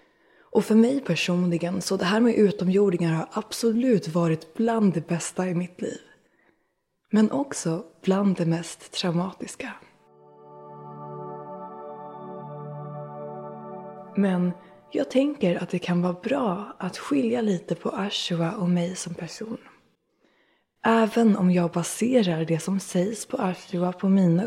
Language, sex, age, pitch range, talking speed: Swedish, female, 20-39, 165-200 Hz, 130 wpm